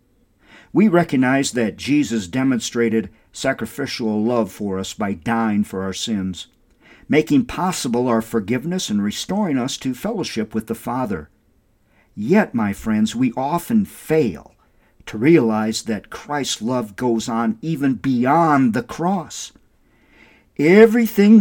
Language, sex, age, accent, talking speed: English, male, 50-69, American, 125 wpm